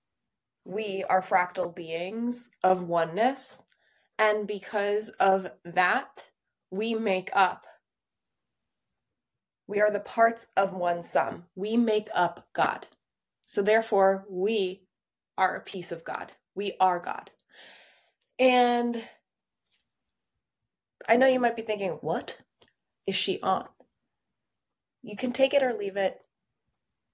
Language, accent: English, American